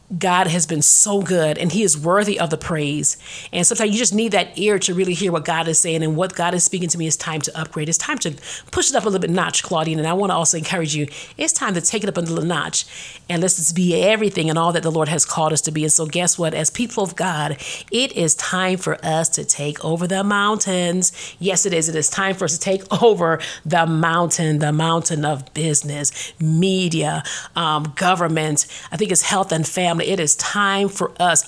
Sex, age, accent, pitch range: female, 40-59, American, 160-190 Hz